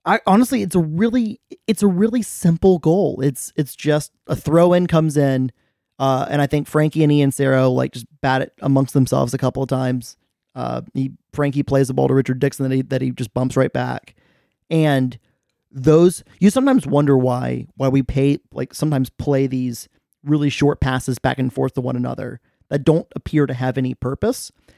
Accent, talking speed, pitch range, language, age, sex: American, 195 wpm, 130-155 Hz, English, 30-49, male